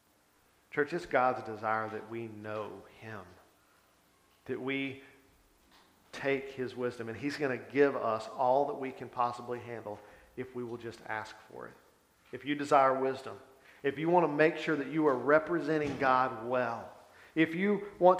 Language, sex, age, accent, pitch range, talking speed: English, male, 50-69, American, 120-150 Hz, 170 wpm